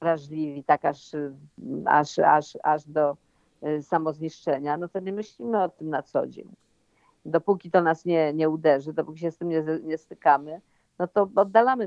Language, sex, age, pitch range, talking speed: Polish, female, 50-69, 150-195 Hz, 165 wpm